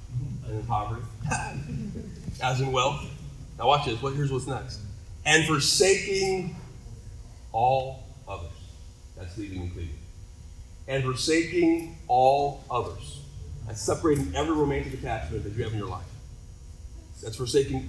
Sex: male